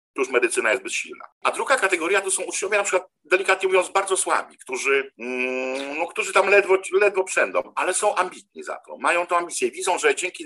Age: 50-69